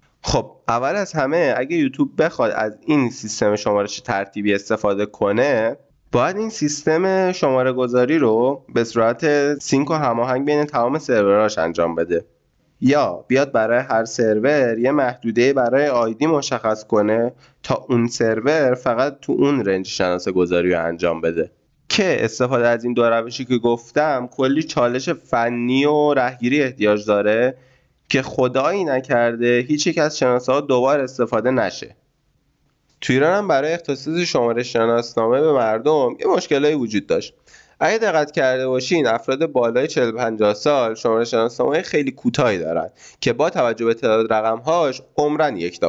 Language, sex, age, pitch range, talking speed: Persian, male, 20-39, 110-150 Hz, 145 wpm